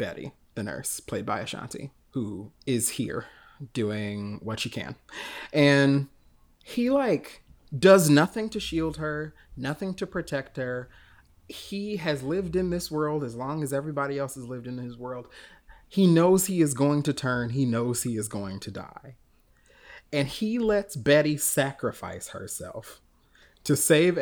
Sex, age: male, 30-49